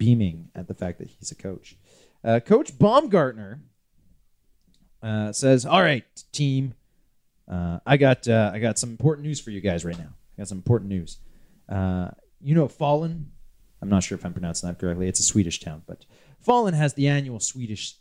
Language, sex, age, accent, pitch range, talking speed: English, male, 30-49, American, 90-135 Hz, 185 wpm